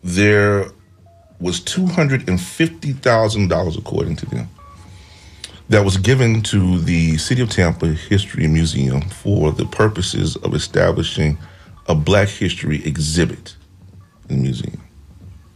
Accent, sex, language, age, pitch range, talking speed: American, male, English, 40-59, 90-110 Hz, 125 wpm